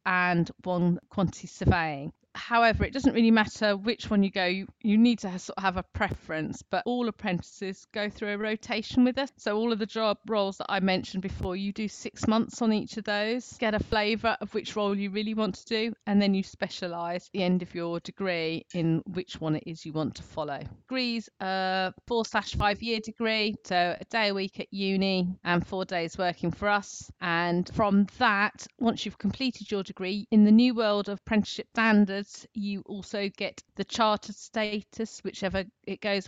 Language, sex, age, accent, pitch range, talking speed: English, female, 40-59, British, 185-220 Hz, 205 wpm